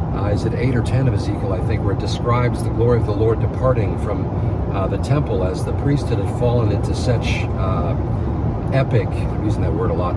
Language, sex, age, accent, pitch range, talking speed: English, male, 50-69, American, 105-130 Hz, 225 wpm